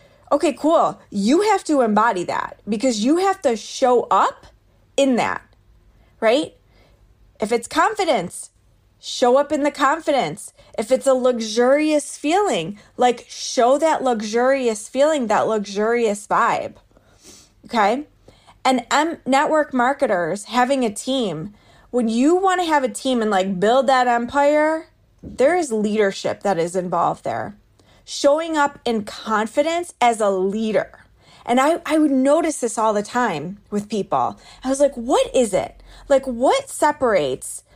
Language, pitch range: English, 220-295 Hz